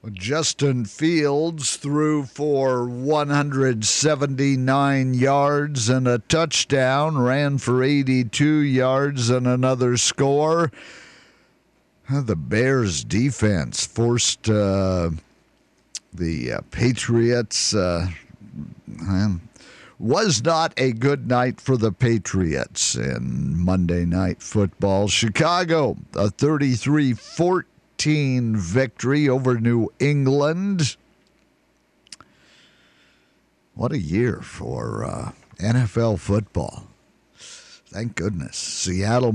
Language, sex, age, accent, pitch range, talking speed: English, male, 50-69, American, 105-140 Hz, 80 wpm